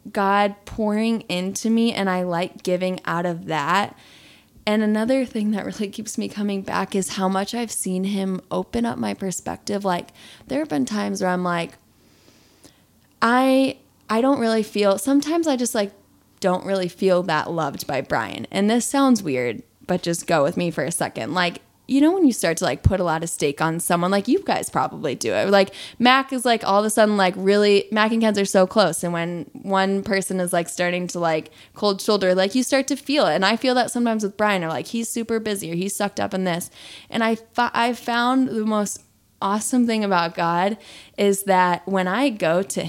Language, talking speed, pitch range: English, 215 wpm, 180-230 Hz